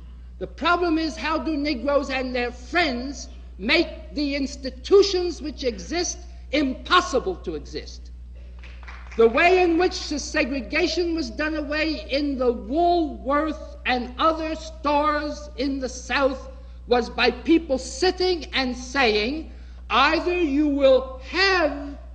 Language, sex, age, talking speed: English, male, 60-79, 120 wpm